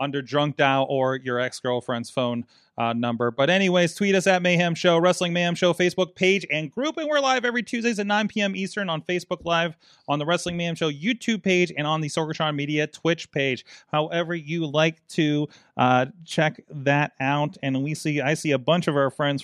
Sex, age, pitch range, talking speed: male, 30-49, 135-175 Hz, 205 wpm